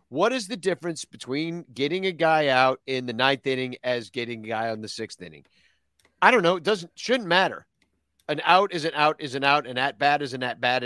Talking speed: 225 wpm